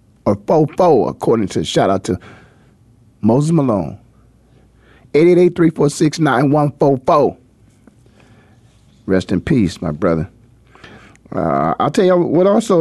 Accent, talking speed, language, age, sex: American, 100 wpm, English, 40-59, male